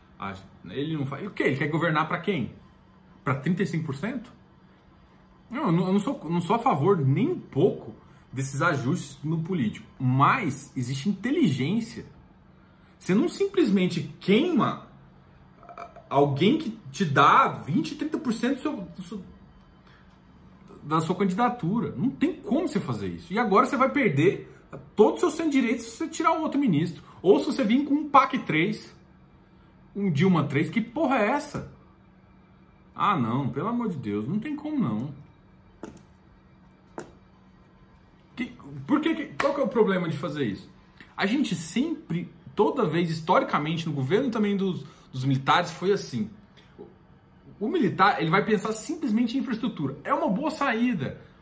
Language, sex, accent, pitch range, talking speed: Portuguese, male, Brazilian, 150-250 Hz, 150 wpm